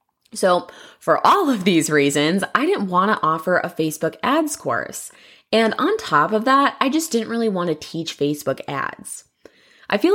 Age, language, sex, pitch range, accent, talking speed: 20-39, English, female, 150-230 Hz, American, 185 wpm